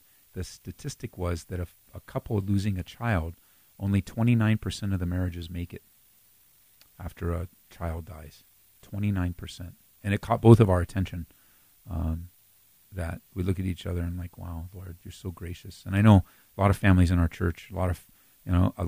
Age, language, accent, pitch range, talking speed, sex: 40-59, English, American, 85-100 Hz, 190 wpm, male